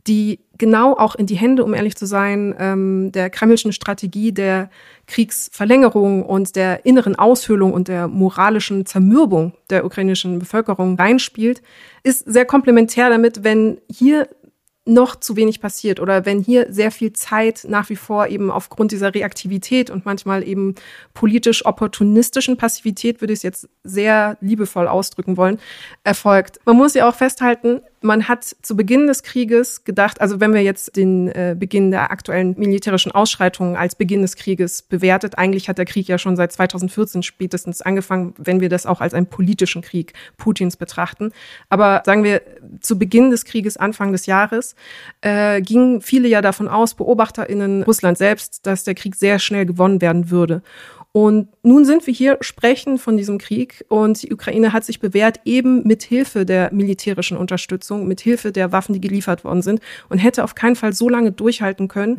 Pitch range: 190-230 Hz